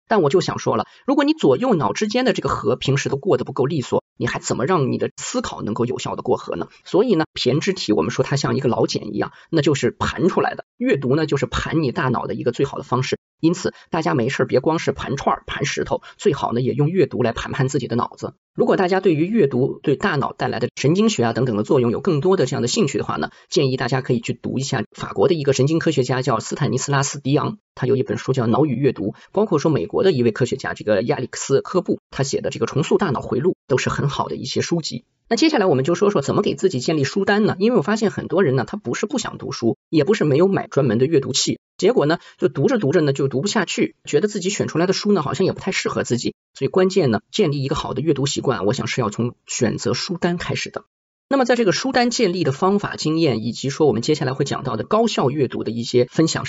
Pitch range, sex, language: 125-185 Hz, male, Chinese